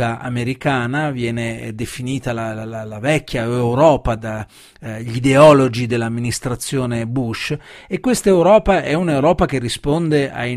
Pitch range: 120-150 Hz